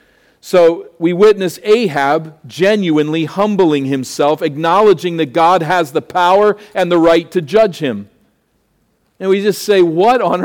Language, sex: English, male